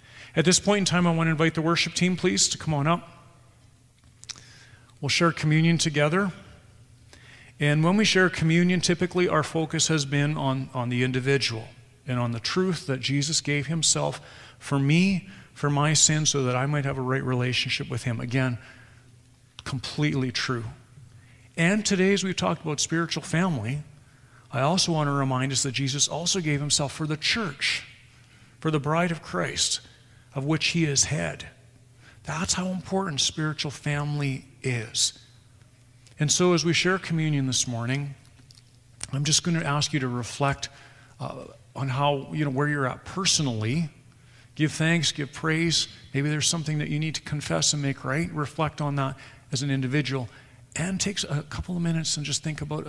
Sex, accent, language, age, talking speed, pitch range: male, American, English, 40-59, 175 wpm, 125-160 Hz